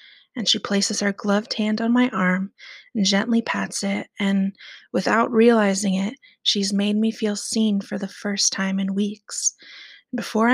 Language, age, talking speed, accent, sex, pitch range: English, 30-49, 165 wpm, American, female, 200-230 Hz